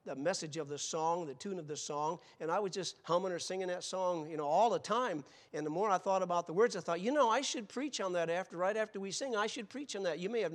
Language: English